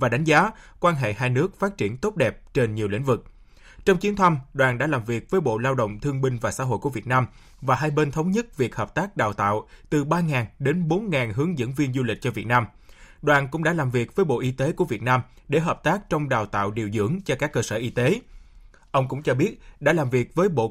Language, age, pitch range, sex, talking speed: Vietnamese, 20-39, 125-175 Hz, male, 265 wpm